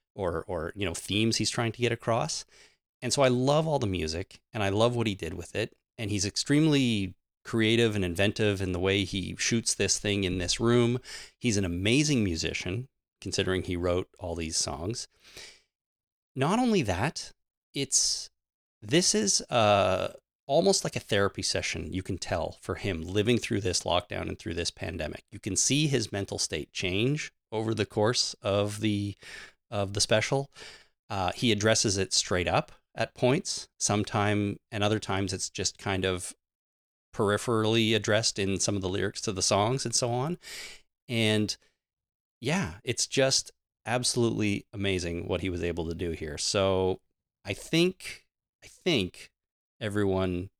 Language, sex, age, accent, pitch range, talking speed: English, male, 30-49, American, 95-115 Hz, 165 wpm